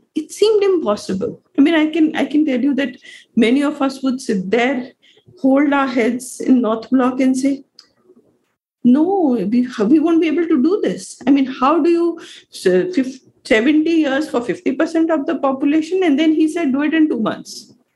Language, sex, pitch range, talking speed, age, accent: English, female, 230-330 Hz, 195 wpm, 50-69, Indian